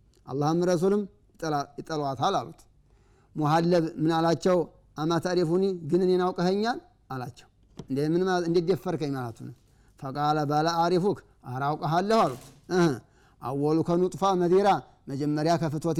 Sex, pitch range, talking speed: male, 130-170 Hz, 115 wpm